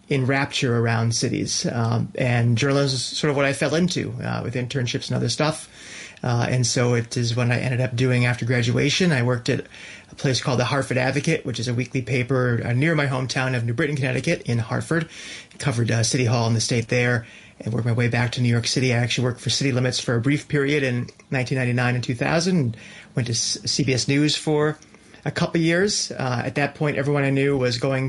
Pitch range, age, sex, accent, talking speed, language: 120-145 Hz, 30-49, male, American, 225 wpm, English